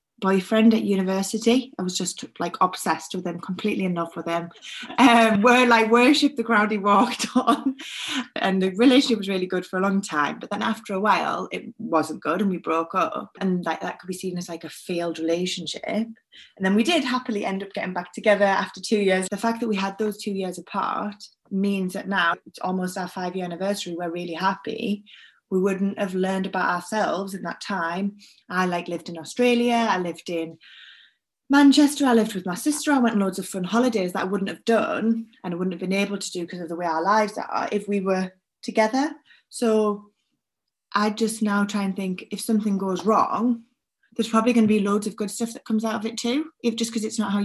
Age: 20-39